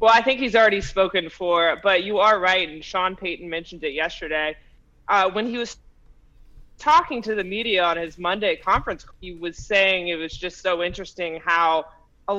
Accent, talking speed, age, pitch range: American, 190 wpm, 20-39, 170-200 Hz